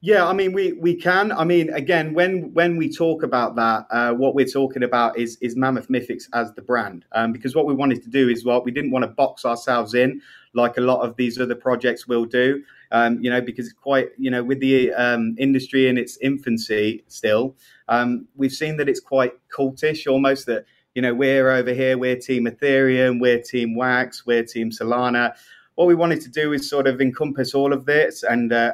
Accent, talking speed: British, 220 wpm